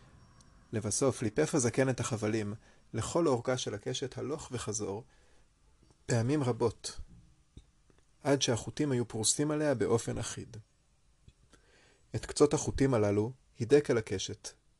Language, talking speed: Hebrew, 105 wpm